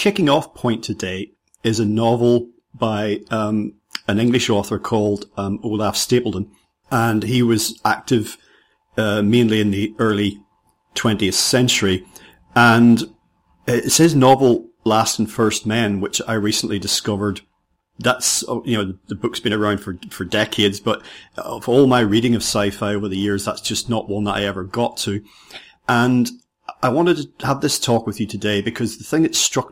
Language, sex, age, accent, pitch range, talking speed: English, male, 40-59, British, 105-120 Hz, 170 wpm